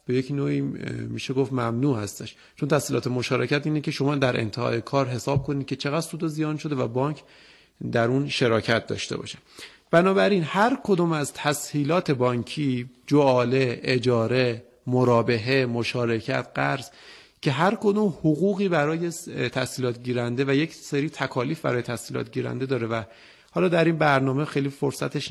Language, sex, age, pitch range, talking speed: Persian, male, 30-49, 125-160 Hz, 145 wpm